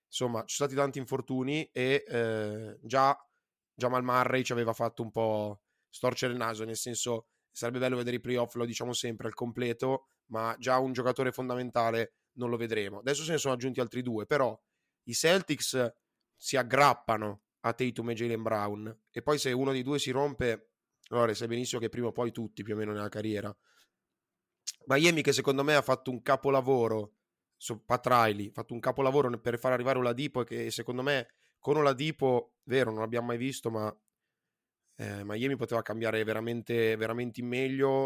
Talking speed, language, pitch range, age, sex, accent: 180 wpm, Italian, 115-130 Hz, 20-39, male, native